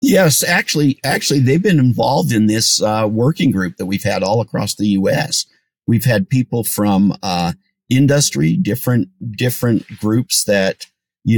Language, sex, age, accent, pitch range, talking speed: English, male, 50-69, American, 105-140 Hz, 155 wpm